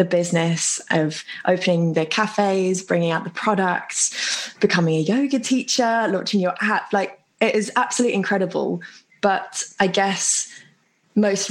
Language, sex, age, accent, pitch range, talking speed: English, female, 20-39, British, 170-215 Hz, 130 wpm